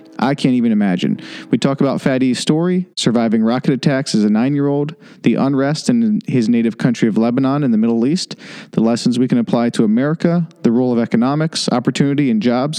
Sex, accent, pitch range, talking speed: male, American, 125-200 Hz, 190 wpm